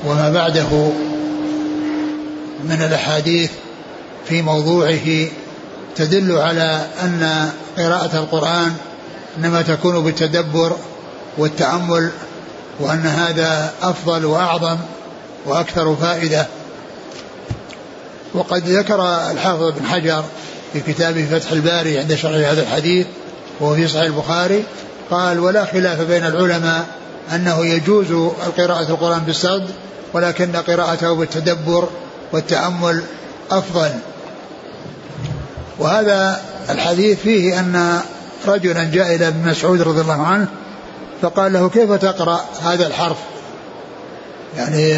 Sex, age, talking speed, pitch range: male, 60-79, 95 wpm, 160-180 Hz